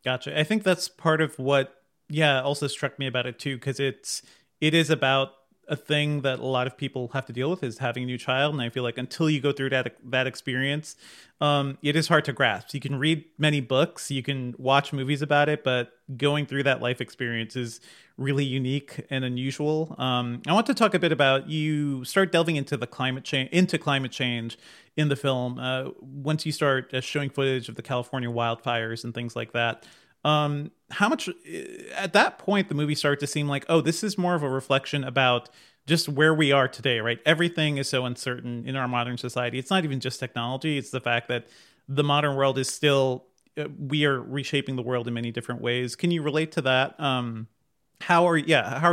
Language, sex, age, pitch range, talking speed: English, male, 30-49, 125-150 Hz, 220 wpm